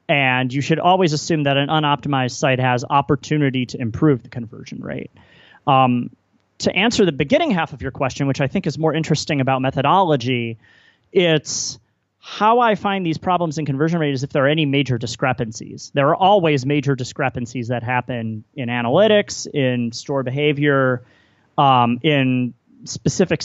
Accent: American